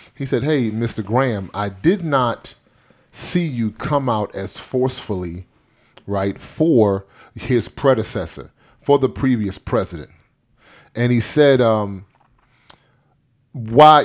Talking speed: 115 wpm